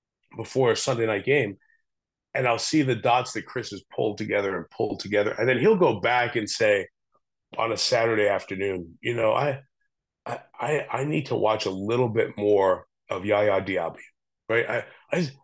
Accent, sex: American, male